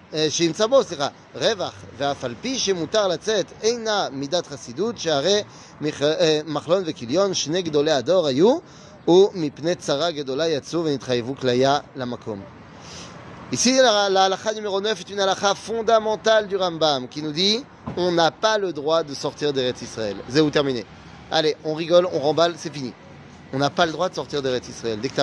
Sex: male